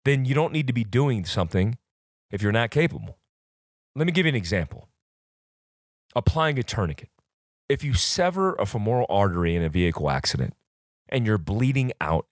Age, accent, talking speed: 30-49, American, 170 wpm